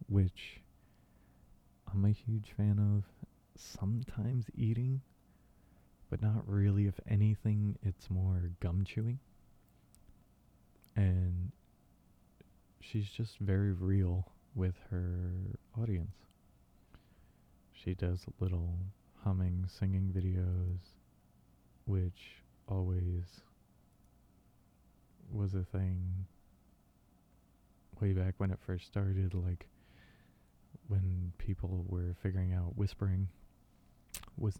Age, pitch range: 20-39, 90-100 Hz